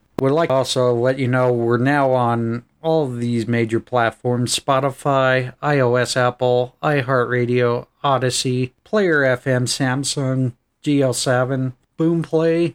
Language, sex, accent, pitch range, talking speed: English, male, American, 120-135 Hz, 120 wpm